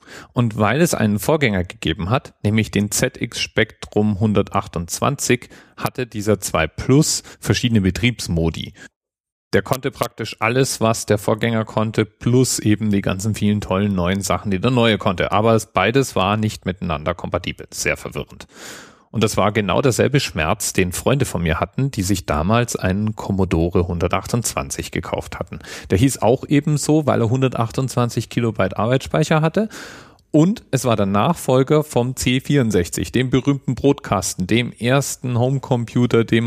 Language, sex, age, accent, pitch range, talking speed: German, male, 40-59, German, 95-125 Hz, 145 wpm